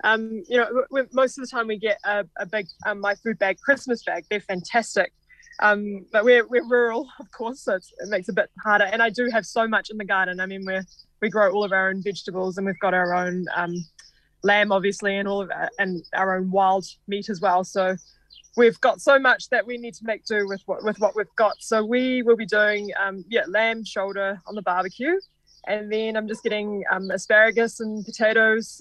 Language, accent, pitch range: English, Australian, 195-230 Hz